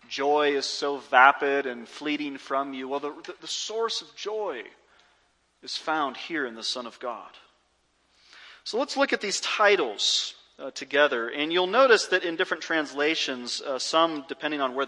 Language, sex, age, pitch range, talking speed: English, male, 30-49, 130-165 Hz, 175 wpm